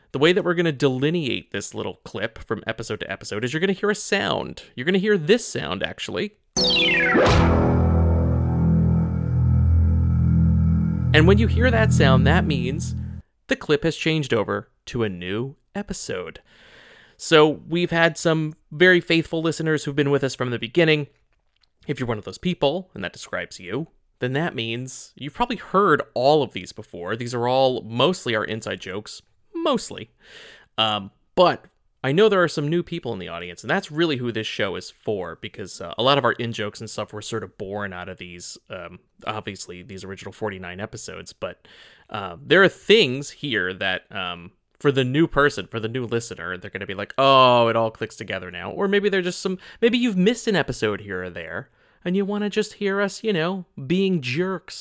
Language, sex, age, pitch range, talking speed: English, male, 30-49, 105-170 Hz, 195 wpm